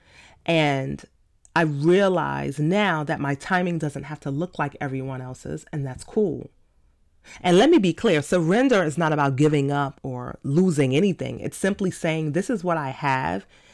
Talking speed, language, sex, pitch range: 170 wpm, English, female, 135-175 Hz